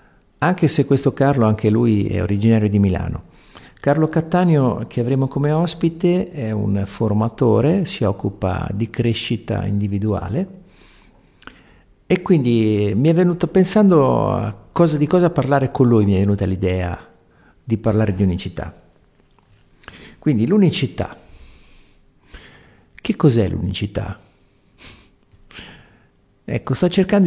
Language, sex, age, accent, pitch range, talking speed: Italian, male, 50-69, native, 105-155 Hz, 115 wpm